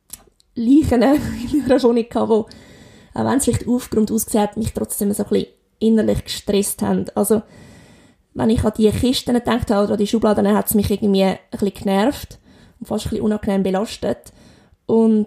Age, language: 20-39, German